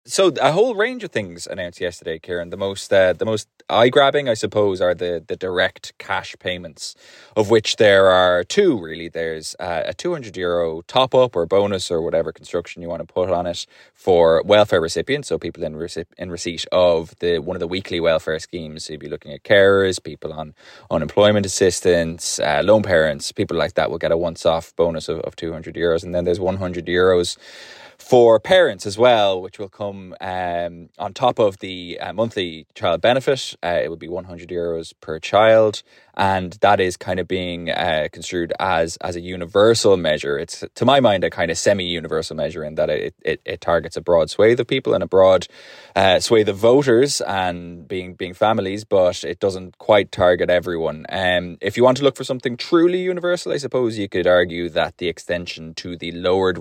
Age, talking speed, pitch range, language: 20-39, 210 wpm, 85-105 Hz, English